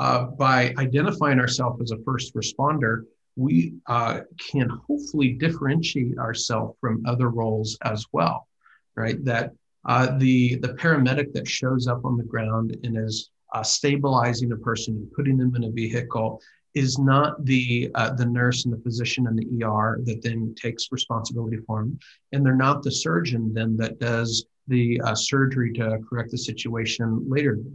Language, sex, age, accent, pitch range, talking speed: English, male, 50-69, American, 115-135 Hz, 170 wpm